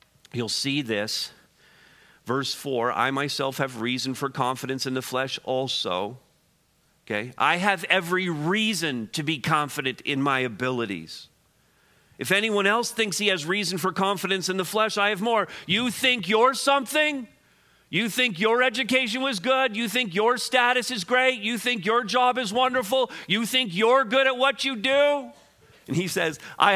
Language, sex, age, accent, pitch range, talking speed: English, male, 40-59, American, 155-230 Hz, 170 wpm